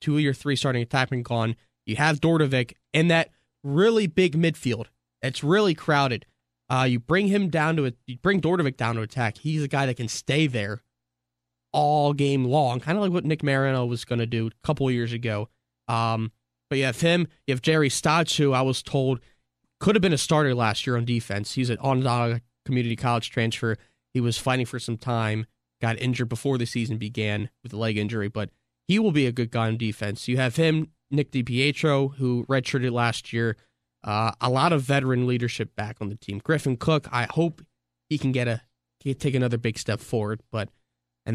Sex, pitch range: male, 110-140 Hz